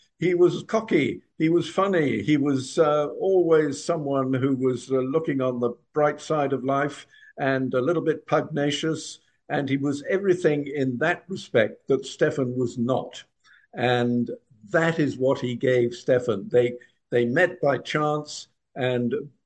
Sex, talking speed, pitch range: male, 155 wpm, 130-160 Hz